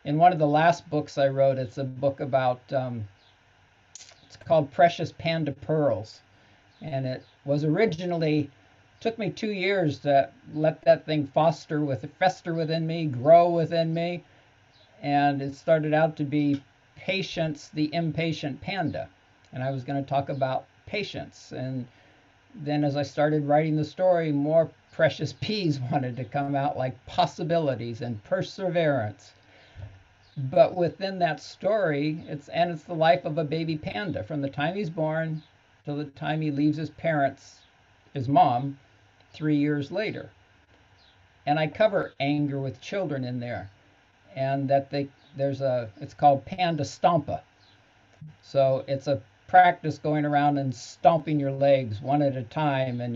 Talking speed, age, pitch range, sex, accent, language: 155 wpm, 50-69, 125-160 Hz, male, American, English